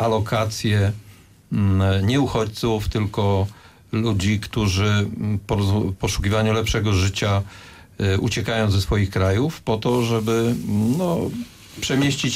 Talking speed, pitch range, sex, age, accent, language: 85 wpm, 100-115 Hz, male, 50-69, native, Polish